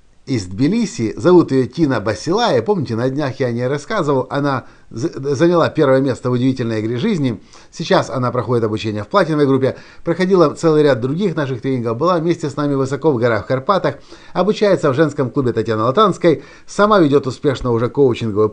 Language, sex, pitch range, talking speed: Russian, male, 130-170 Hz, 175 wpm